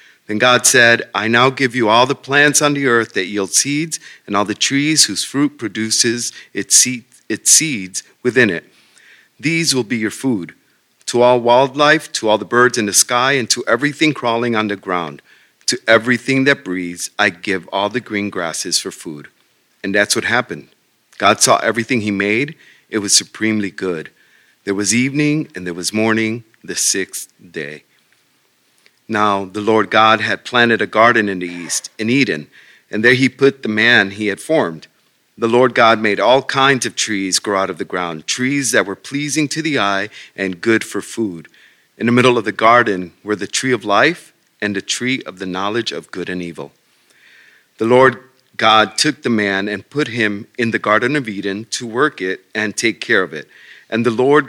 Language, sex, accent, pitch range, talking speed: English, male, American, 100-130 Hz, 195 wpm